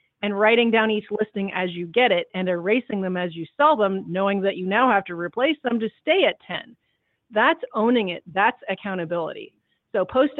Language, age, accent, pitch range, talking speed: English, 40-59, American, 190-240 Hz, 200 wpm